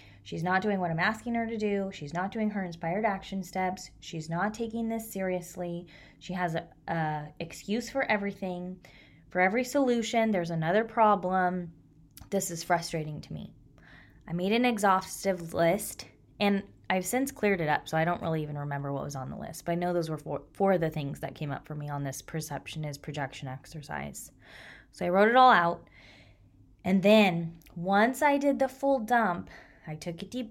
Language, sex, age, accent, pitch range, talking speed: English, female, 20-39, American, 155-205 Hz, 195 wpm